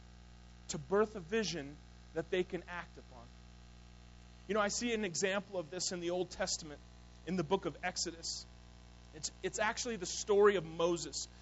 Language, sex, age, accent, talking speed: English, male, 30-49, American, 175 wpm